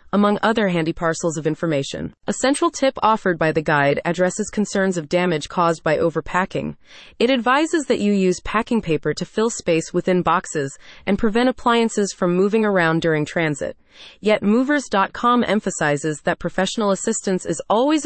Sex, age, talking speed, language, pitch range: female, 30-49, 160 wpm, English, 170-230 Hz